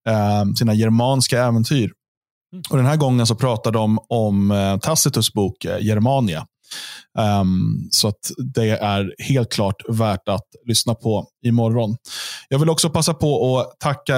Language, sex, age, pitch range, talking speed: Swedish, male, 20-39, 110-135 Hz, 140 wpm